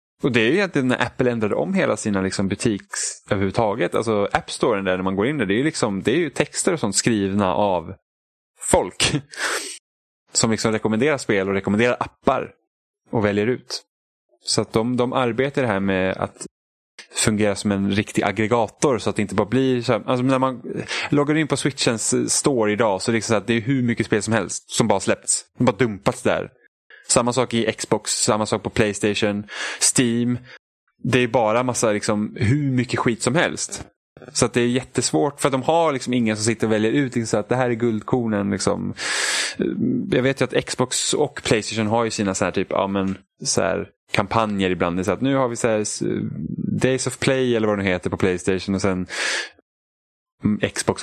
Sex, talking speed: male, 200 wpm